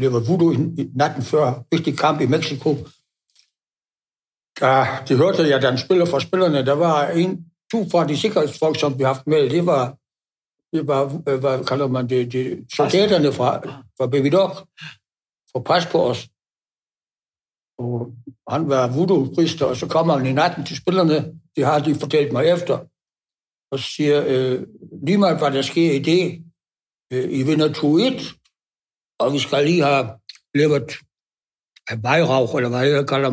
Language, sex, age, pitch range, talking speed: Danish, male, 60-79, 130-160 Hz, 160 wpm